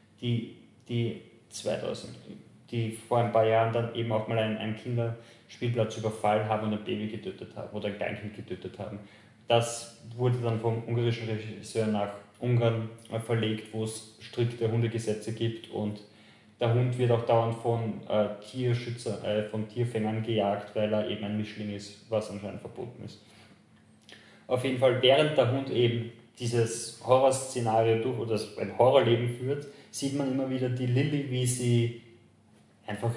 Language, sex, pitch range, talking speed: German, male, 110-115 Hz, 155 wpm